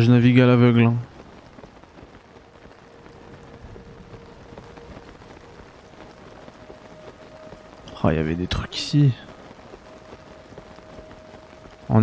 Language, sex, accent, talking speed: French, male, French, 55 wpm